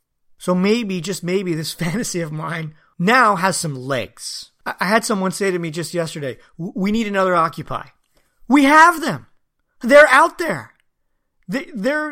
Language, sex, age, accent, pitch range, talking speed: English, male, 40-59, American, 185-240 Hz, 155 wpm